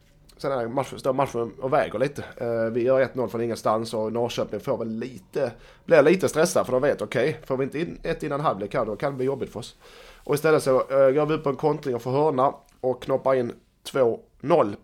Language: Swedish